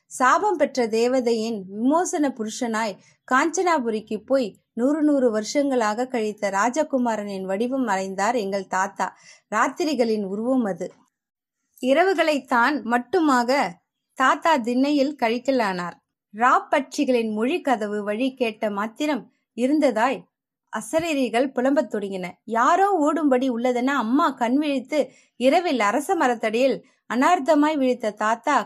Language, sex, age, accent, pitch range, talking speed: Tamil, female, 20-39, native, 220-275 Hz, 90 wpm